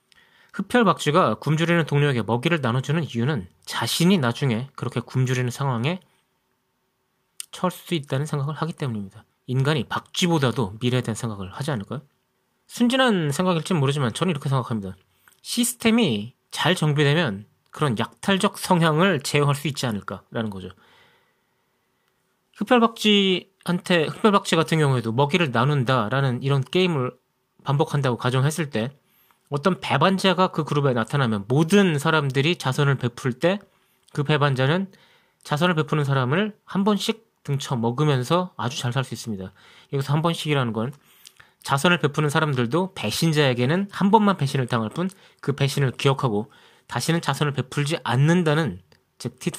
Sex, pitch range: male, 125-175 Hz